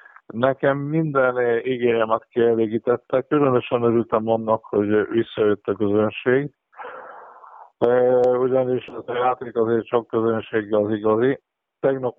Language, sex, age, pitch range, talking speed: Hungarian, male, 50-69, 110-135 Hz, 105 wpm